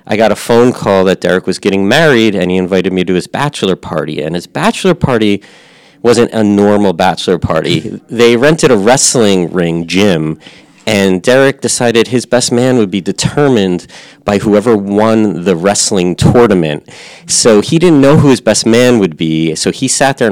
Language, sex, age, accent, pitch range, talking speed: English, male, 30-49, American, 90-125 Hz, 185 wpm